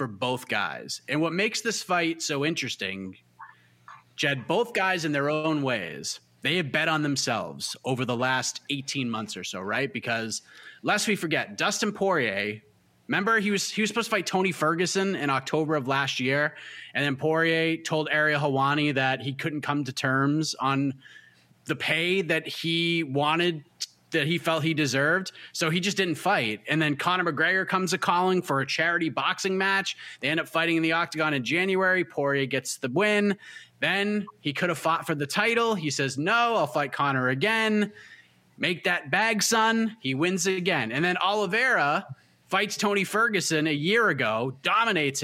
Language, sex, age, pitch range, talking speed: English, male, 30-49, 140-190 Hz, 180 wpm